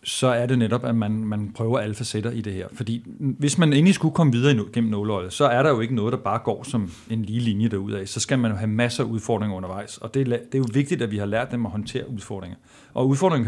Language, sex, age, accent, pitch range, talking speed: Danish, male, 40-59, native, 110-140 Hz, 275 wpm